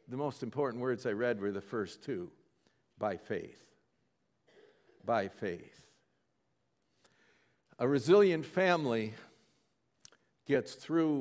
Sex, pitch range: male, 110-150 Hz